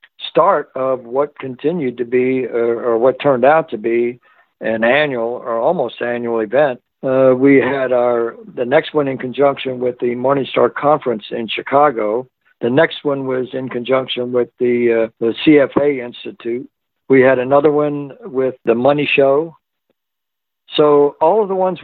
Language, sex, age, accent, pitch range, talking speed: English, male, 60-79, American, 120-145 Hz, 160 wpm